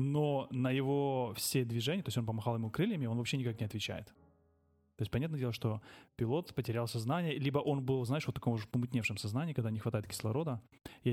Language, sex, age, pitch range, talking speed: Russian, male, 20-39, 110-135 Hz, 205 wpm